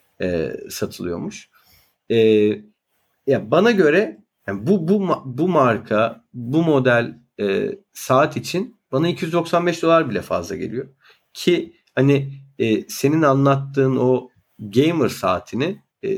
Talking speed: 115 wpm